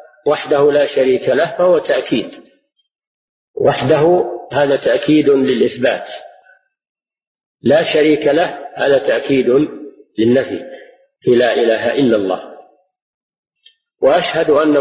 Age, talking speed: 50-69, 95 wpm